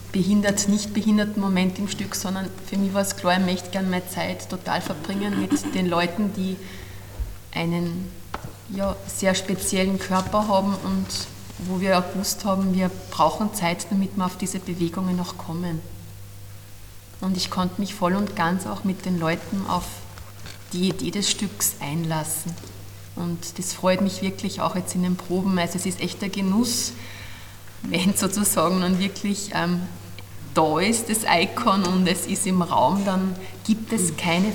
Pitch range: 160-200 Hz